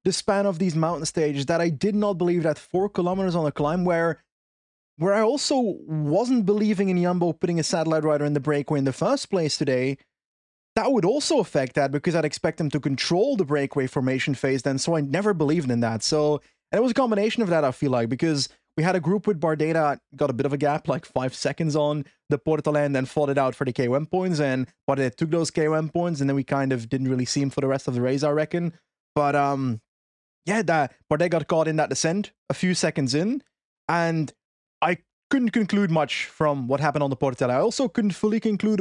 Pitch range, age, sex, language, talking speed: 140-180 Hz, 20-39, male, English, 235 wpm